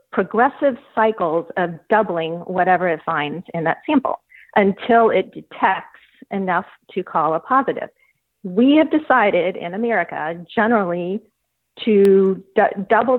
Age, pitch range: 40-59, 180-220 Hz